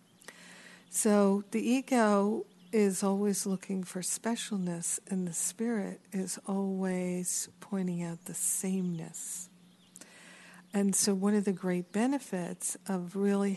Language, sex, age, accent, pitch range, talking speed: English, female, 50-69, American, 185-210 Hz, 115 wpm